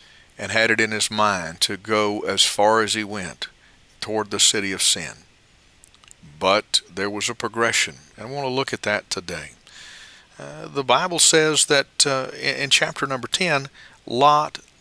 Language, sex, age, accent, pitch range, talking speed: English, male, 50-69, American, 100-130 Hz, 170 wpm